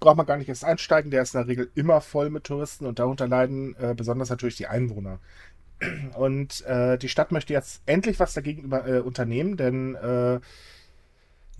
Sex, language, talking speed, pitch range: male, German, 190 wpm, 115-150 Hz